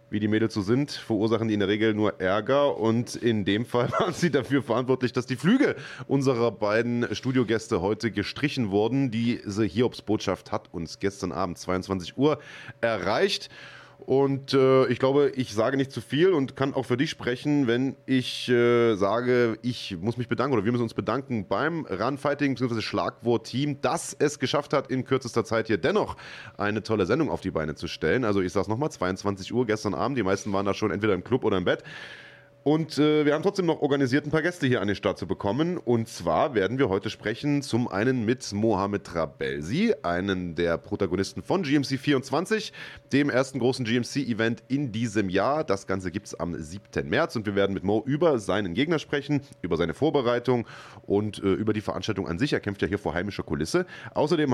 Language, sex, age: German, male, 30-49